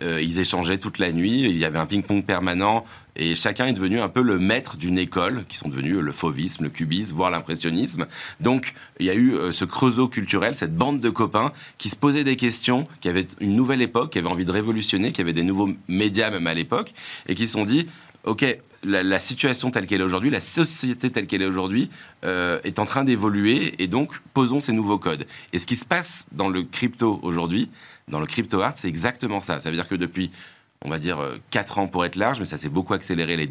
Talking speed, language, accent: 230 wpm, French, French